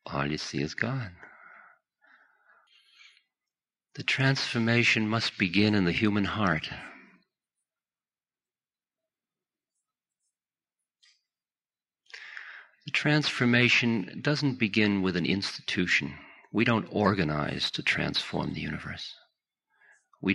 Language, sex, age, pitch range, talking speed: English, male, 50-69, 90-115 Hz, 85 wpm